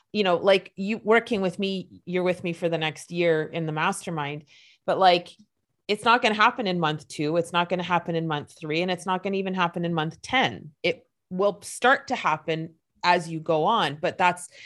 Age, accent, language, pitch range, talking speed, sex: 30-49, American, English, 165-220 Hz, 230 wpm, female